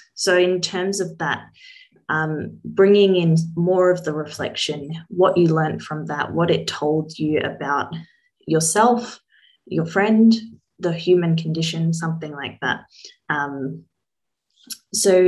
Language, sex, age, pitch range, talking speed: English, female, 20-39, 160-195 Hz, 130 wpm